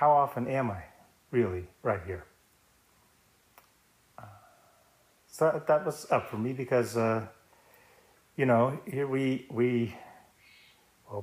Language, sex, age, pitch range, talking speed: English, male, 40-59, 105-140 Hz, 120 wpm